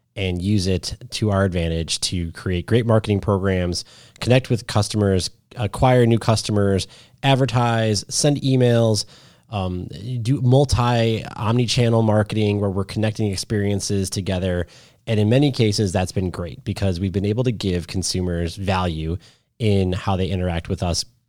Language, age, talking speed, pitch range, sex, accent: English, 30-49, 140 wpm, 95-120 Hz, male, American